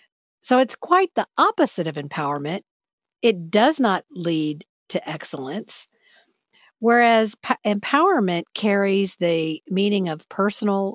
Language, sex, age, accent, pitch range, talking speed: English, female, 50-69, American, 170-225 Hz, 115 wpm